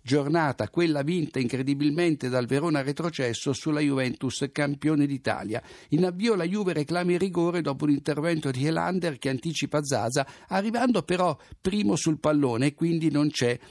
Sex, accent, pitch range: male, native, 135-170 Hz